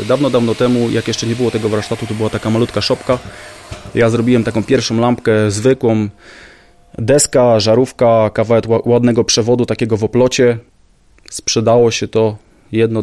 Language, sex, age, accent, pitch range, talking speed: Polish, male, 20-39, native, 105-125 Hz, 145 wpm